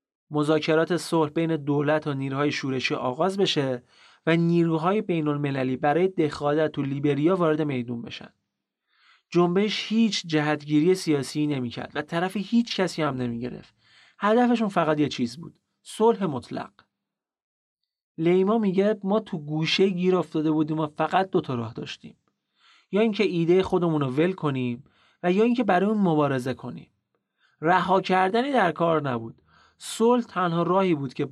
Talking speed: 140 wpm